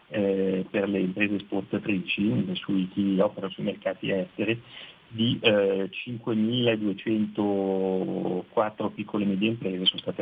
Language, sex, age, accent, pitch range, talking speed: Italian, male, 40-59, native, 100-120 Hz, 110 wpm